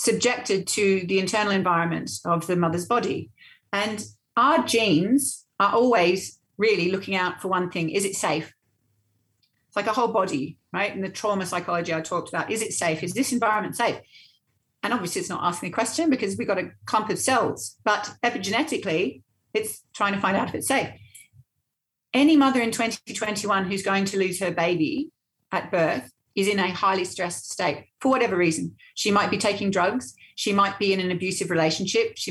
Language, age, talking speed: English, 40-59, 190 wpm